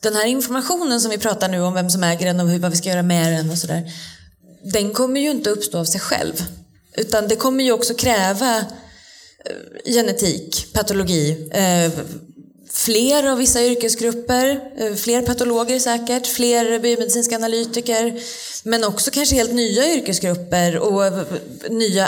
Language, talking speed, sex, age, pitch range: Swedish, 150 wpm, female, 20-39, 175-235 Hz